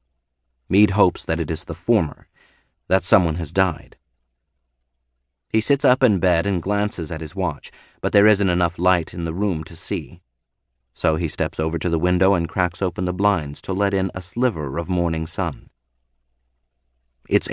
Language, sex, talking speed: English, male, 180 wpm